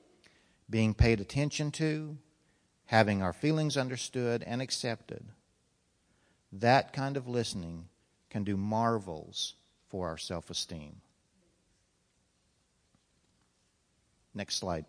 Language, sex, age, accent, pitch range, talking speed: English, male, 50-69, American, 95-125 Hz, 90 wpm